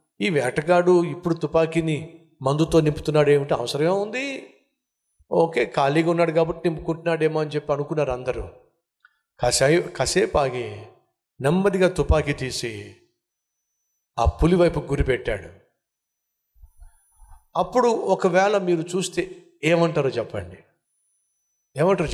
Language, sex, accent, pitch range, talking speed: Telugu, male, native, 150-230 Hz, 90 wpm